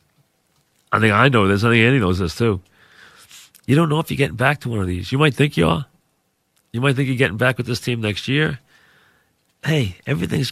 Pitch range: 105-125 Hz